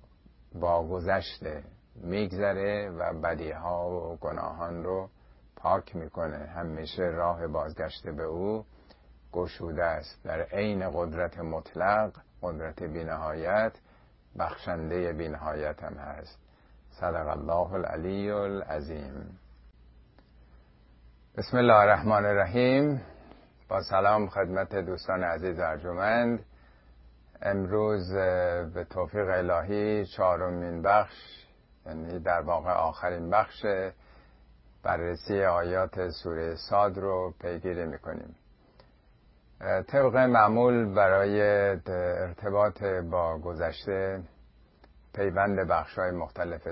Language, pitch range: Persian, 80-100 Hz